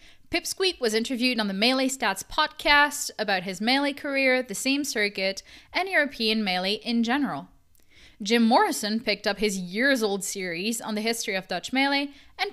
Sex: female